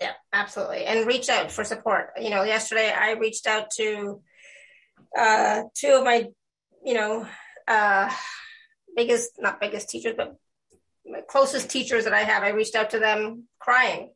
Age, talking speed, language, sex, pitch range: 20-39, 160 wpm, English, female, 215-250 Hz